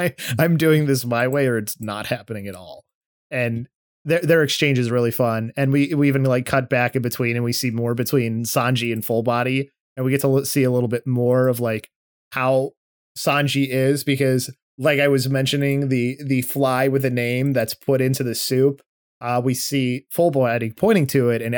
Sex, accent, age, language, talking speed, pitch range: male, American, 20-39, English, 210 wpm, 125-145 Hz